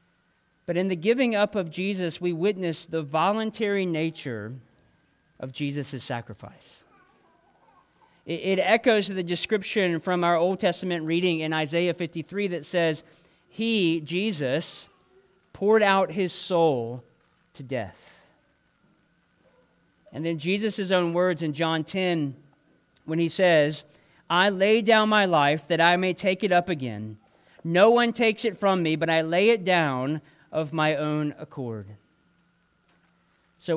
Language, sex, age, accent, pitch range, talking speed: English, male, 40-59, American, 155-205 Hz, 135 wpm